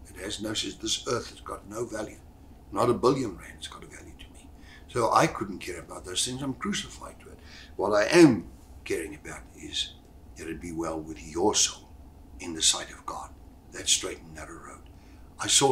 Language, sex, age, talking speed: English, male, 60-79, 205 wpm